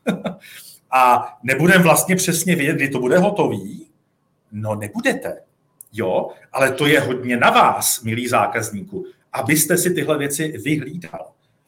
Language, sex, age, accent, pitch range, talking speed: Czech, male, 40-59, native, 120-175 Hz, 130 wpm